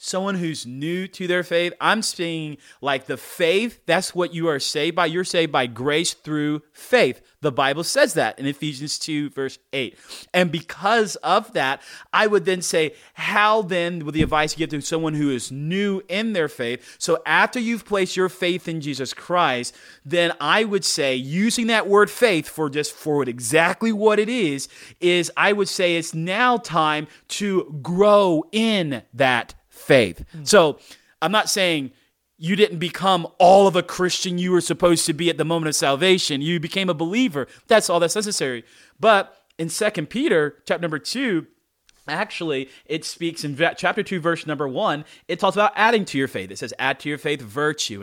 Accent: American